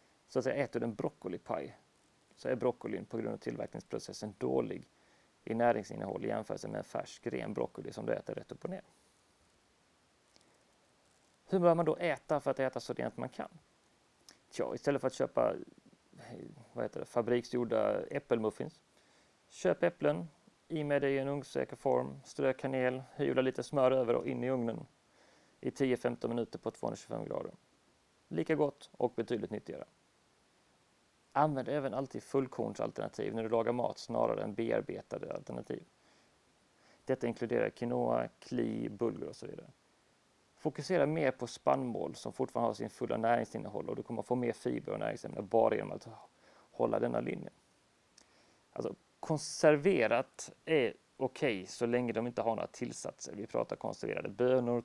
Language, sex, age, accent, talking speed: Swedish, male, 30-49, native, 155 wpm